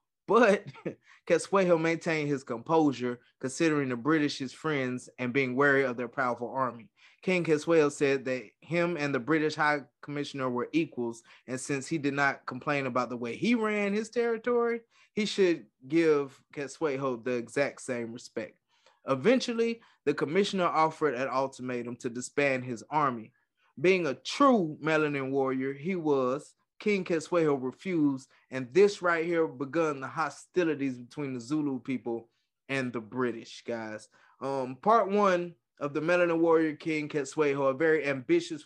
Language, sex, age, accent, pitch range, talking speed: English, male, 20-39, American, 130-170 Hz, 150 wpm